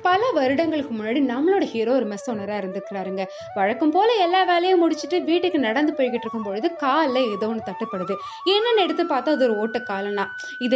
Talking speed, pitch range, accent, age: 135 wpm, 235-350 Hz, native, 20-39